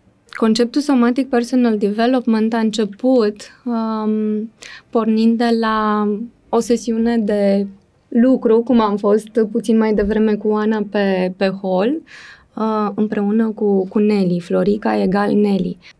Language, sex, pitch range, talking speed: Romanian, female, 215-245 Hz, 125 wpm